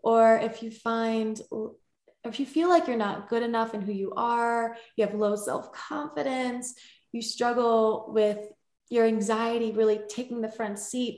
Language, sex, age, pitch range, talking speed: English, female, 20-39, 205-240 Hz, 160 wpm